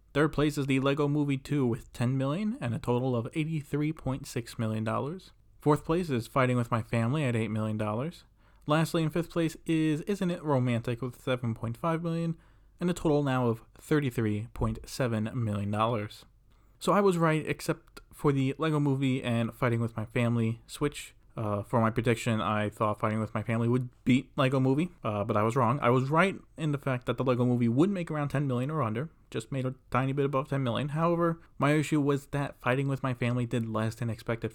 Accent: American